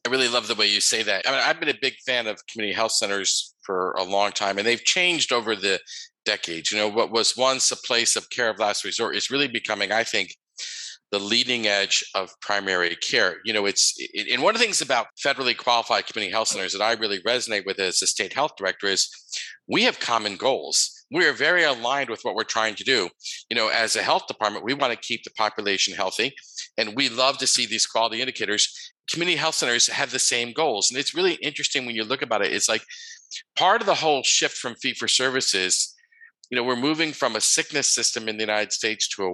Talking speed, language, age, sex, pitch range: 235 wpm, English, 50-69, male, 110-160 Hz